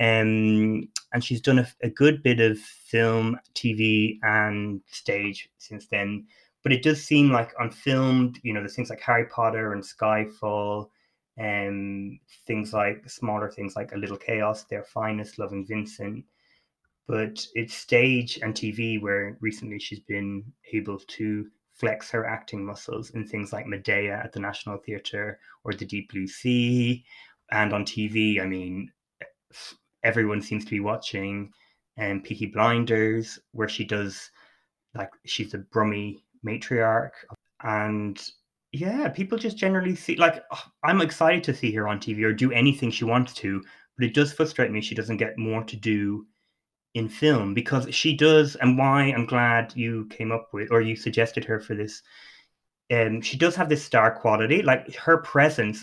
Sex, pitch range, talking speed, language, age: male, 105-125 Hz, 165 wpm, English, 20-39